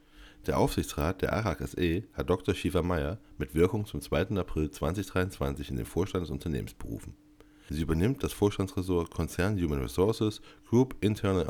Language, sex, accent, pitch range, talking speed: German, male, German, 75-105 Hz, 150 wpm